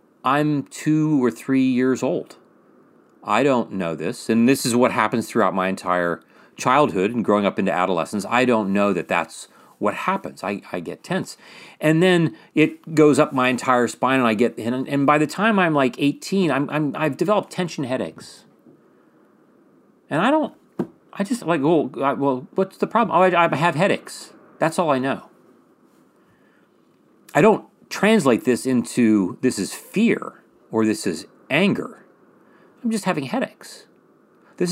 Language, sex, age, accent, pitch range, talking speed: English, male, 40-59, American, 115-165 Hz, 170 wpm